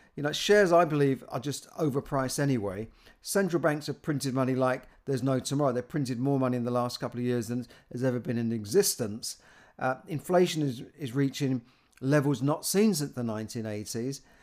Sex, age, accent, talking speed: male, 50-69, British, 185 wpm